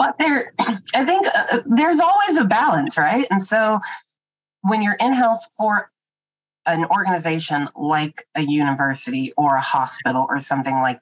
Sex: female